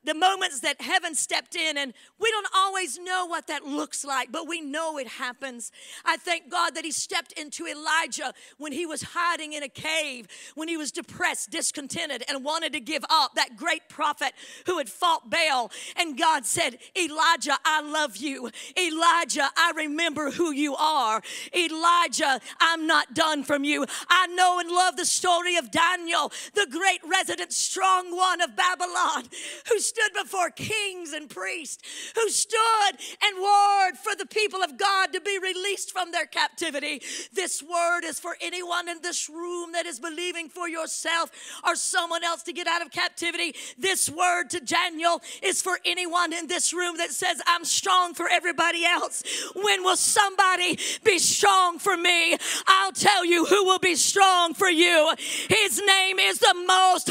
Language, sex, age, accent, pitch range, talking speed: English, female, 50-69, American, 315-370 Hz, 175 wpm